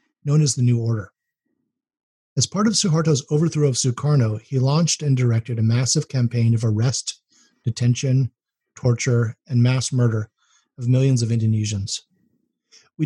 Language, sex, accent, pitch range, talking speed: English, male, American, 115-140 Hz, 140 wpm